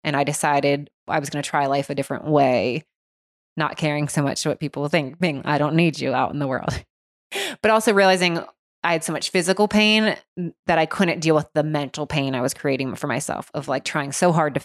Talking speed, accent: 235 wpm, American